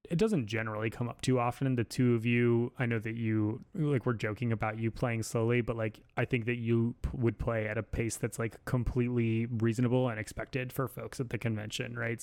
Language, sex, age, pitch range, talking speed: English, male, 20-39, 110-130 Hz, 225 wpm